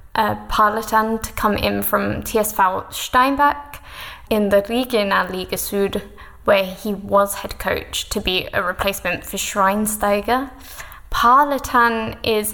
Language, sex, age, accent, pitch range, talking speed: English, female, 10-29, British, 200-240 Hz, 125 wpm